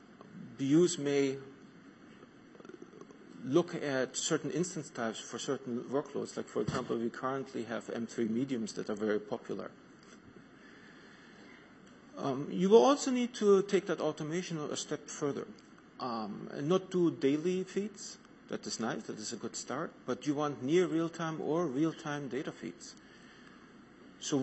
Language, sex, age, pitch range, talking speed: English, male, 40-59, 135-180 Hz, 145 wpm